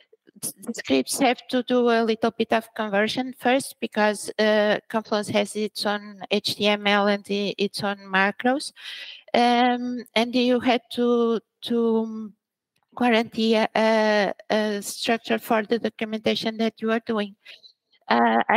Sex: female